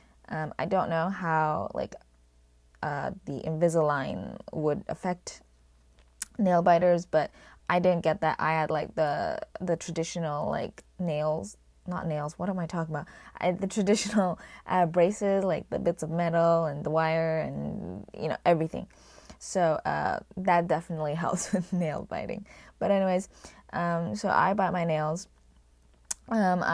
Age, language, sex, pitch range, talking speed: 20-39, English, female, 150-180 Hz, 155 wpm